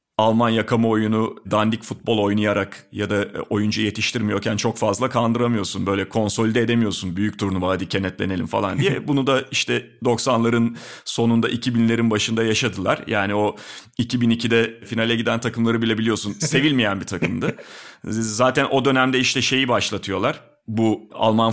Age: 40-59